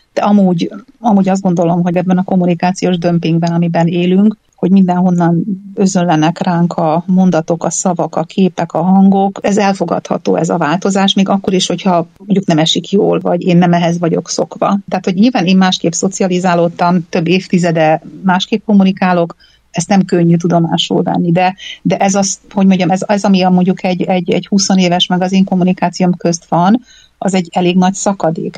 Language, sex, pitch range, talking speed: Hungarian, female, 170-195 Hz, 175 wpm